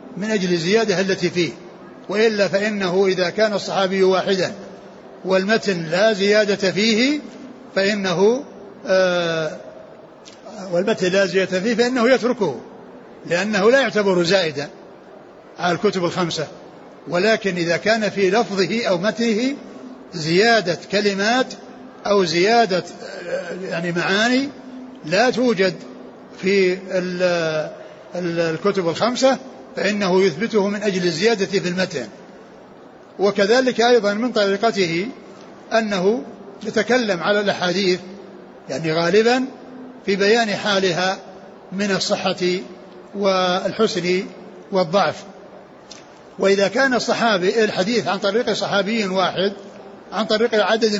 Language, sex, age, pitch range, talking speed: Arabic, male, 60-79, 185-225 Hz, 100 wpm